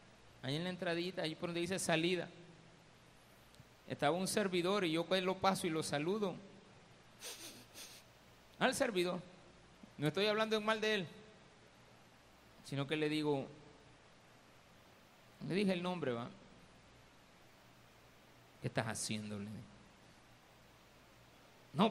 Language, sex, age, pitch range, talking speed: Spanish, male, 50-69, 140-185 Hz, 110 wpm